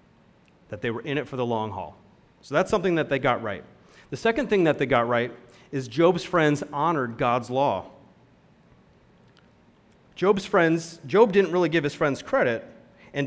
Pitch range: 130-170 Hz